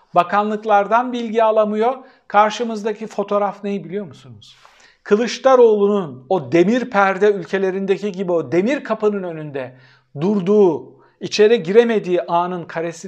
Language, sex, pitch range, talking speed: Turkish, male, 175-240 Hz, 105 wpm